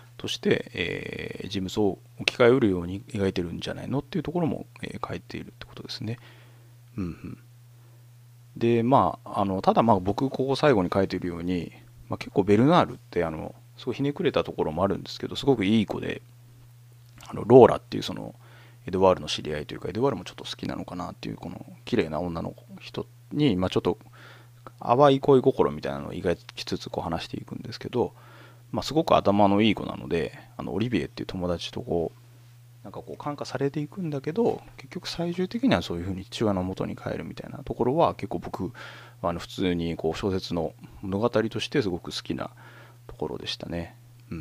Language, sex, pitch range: Japanese, male, 95-120 Hz